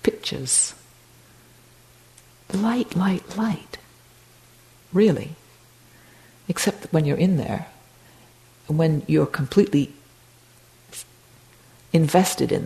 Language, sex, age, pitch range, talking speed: English, female, 50-69, 140-180 Hz, 80 wpm